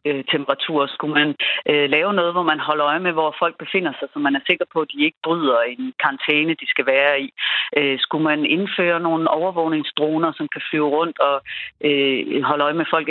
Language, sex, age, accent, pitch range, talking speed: Danish, female, 40-59, native, 150-195 Hz, 220 wpm